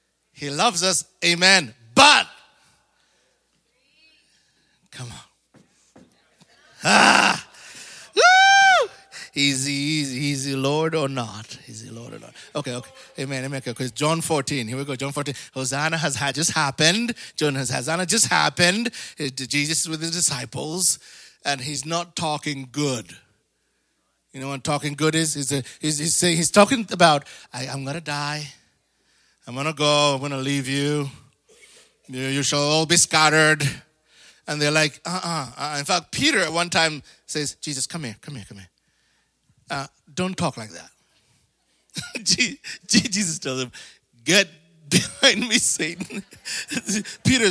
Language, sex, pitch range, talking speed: English, male, 140-190 Hz, 145 wpm